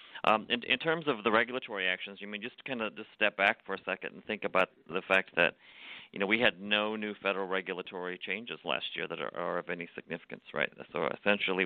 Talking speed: 230 wpm